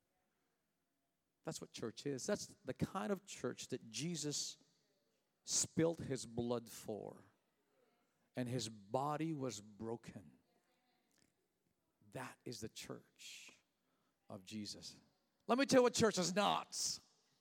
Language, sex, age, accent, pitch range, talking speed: English, male, 50-69, American, 130-200 Hz, 115 wpm